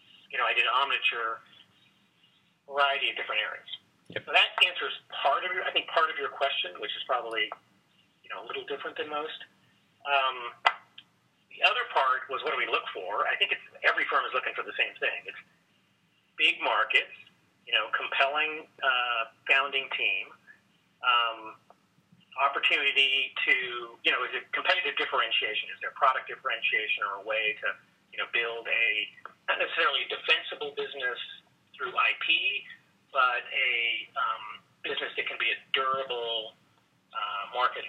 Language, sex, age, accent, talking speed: English, male, 40-59, American, 160 wpm